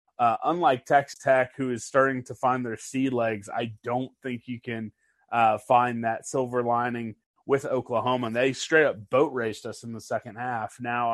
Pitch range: 120-135 Hz